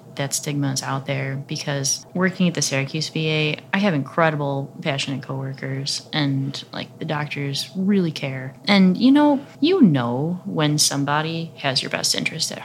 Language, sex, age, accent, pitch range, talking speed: English, female, 20-39, American, 140-180 Hz, 160 wpm